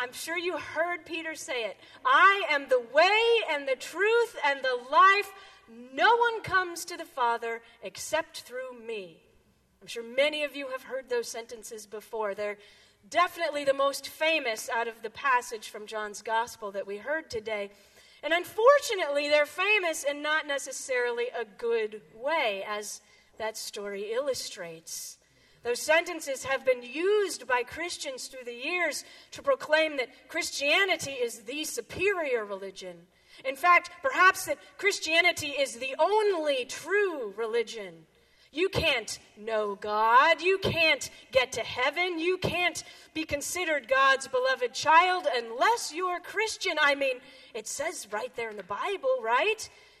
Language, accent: English, American